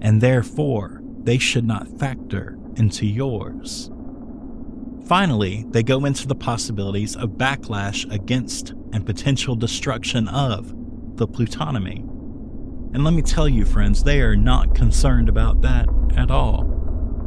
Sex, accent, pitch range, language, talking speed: male, American, 85-125 Hz, English, 130 wpm